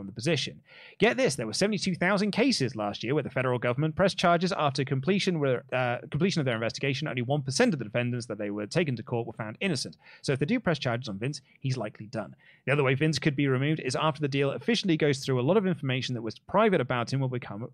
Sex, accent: male, British